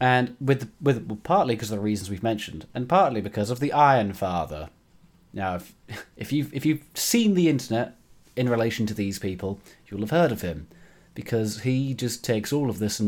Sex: male